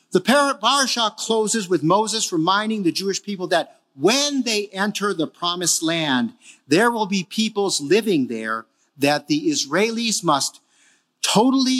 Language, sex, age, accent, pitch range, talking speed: English, male, 50-69, American, 165-225 Hz, 135 wpm